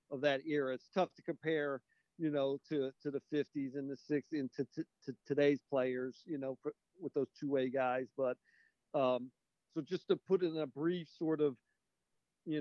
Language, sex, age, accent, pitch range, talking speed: English, male, 50-69, American, 135-155 Hz, 195 wpm